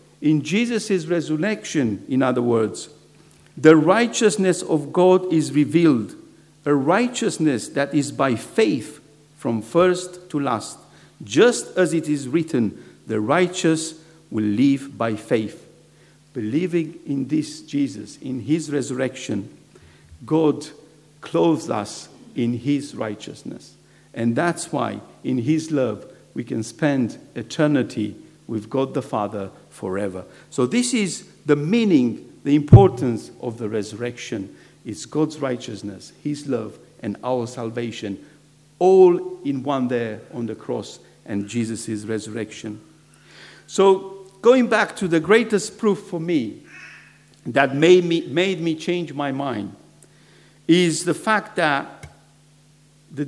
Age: 50-69